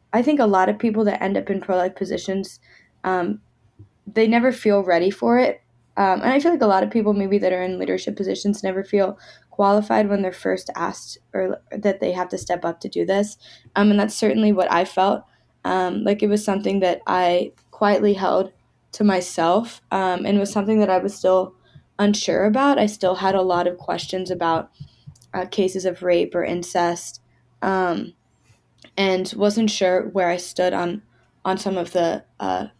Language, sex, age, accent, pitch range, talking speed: English, female, 10-29, American, 180-205 Hz, 195 wpm